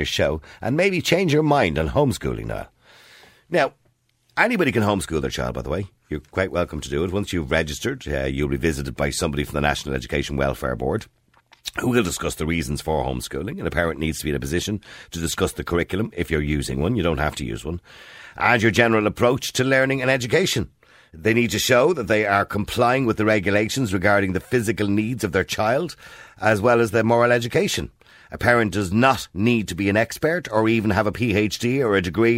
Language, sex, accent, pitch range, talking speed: English, male, Irish, 75-110 Hz, 220 wpm